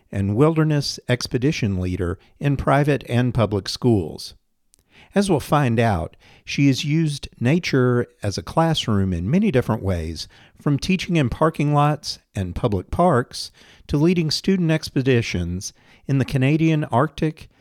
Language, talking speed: English, 135 wpm